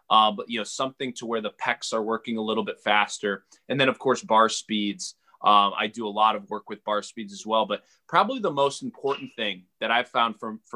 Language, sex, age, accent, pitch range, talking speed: English, male, 20-39, American, 110-135 Hz, 240 wpm